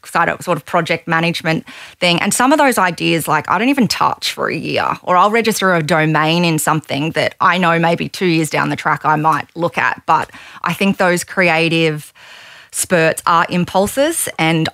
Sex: female